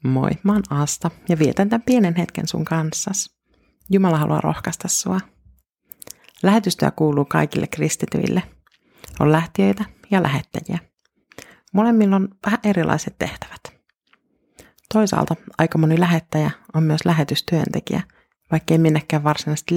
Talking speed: 120 wpm